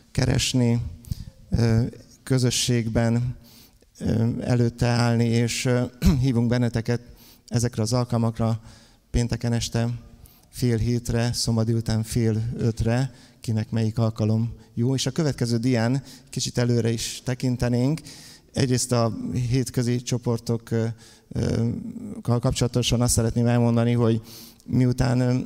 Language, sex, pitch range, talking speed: Hungarian, male, 115-125 Hz, 95 wpm